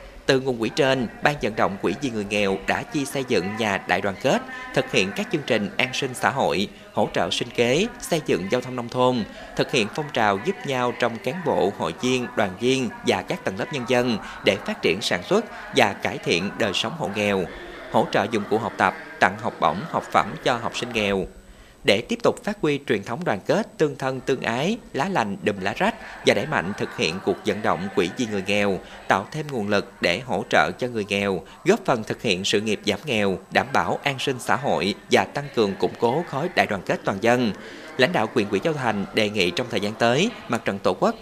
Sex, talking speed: male, 240 wpm